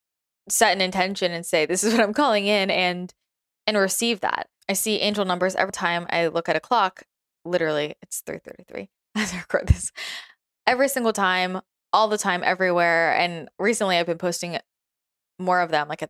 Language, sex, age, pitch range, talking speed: English, female, 20-39, 175-215 Hz, 185 wpm